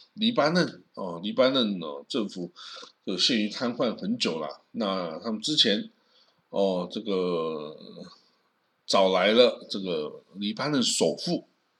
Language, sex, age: Chinese, male, 50-69